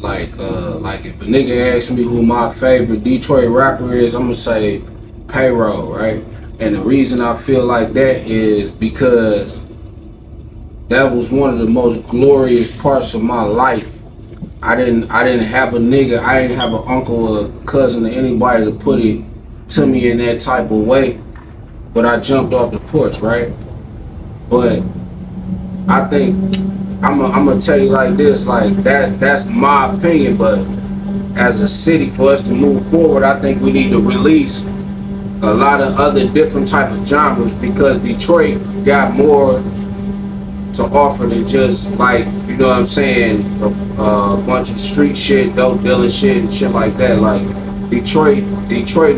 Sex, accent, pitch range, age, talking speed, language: male, American, 105-140 Hz, 20-39, 170 wpm, English